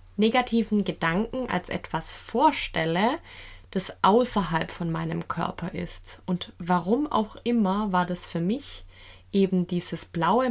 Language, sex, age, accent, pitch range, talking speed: German, female, 20-39, German, 170-225 Hz, 125 wpm